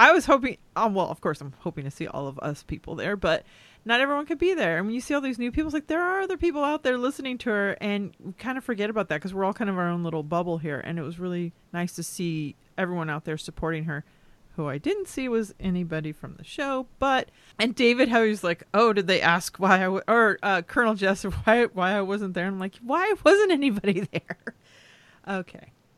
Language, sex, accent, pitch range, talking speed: English, female, American, 170-225 Hz, 255 wpm